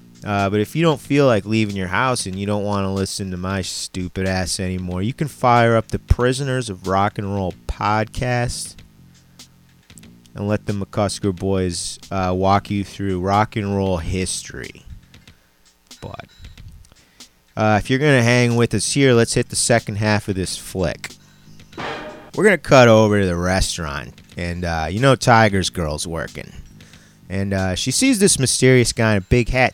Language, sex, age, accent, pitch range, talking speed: English, male, 30-49, American, 95-120 Hz, 180 wpm